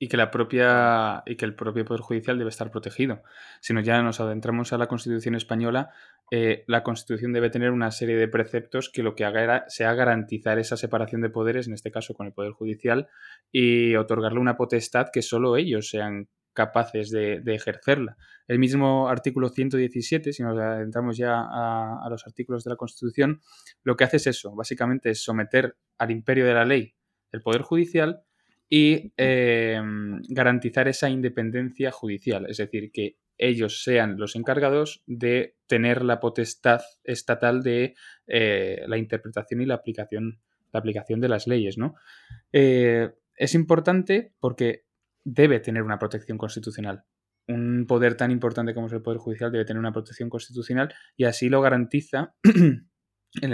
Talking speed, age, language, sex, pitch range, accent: 165 wpm, 20-39, Spanish, male, 110-125 Hz, Spanish